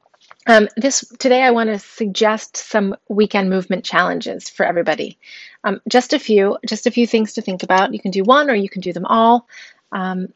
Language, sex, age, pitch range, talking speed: English, female, 30-49, 185-230 Hz, 205 wpm